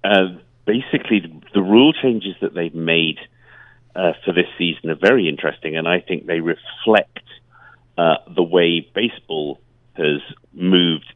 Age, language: 50-69, English